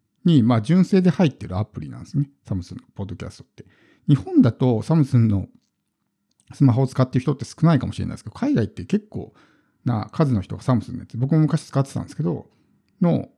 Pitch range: 115-160 Hz